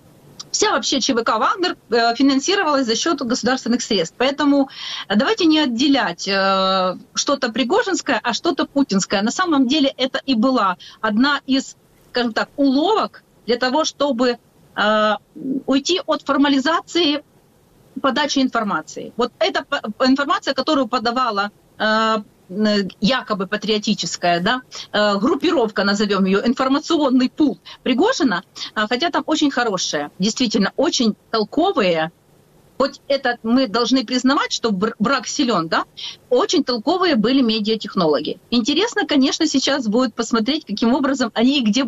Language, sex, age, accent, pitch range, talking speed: Ukrainian, female, 40-59, native, 220-285 Hz, 115 wpm